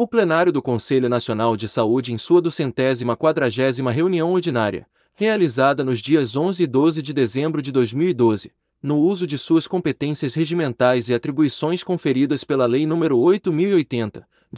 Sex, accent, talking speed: male, Brazilian, 150 wpm